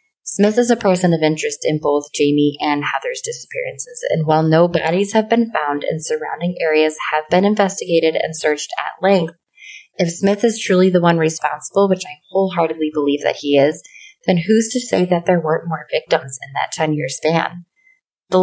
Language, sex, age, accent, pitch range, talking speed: English, female, 20-39, American, 150-190 Hz, 185 wpm